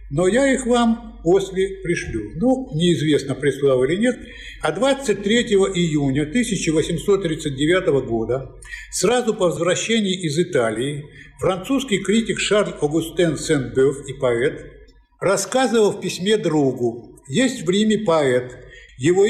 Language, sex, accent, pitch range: Russian, male, native, 140-195 Hz